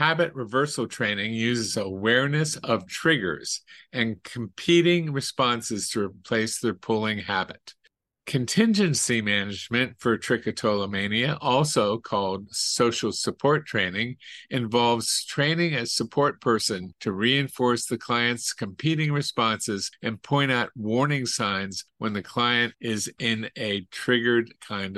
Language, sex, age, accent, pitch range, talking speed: English, male, 50-69, American, 110-140 Hz, 115 wpm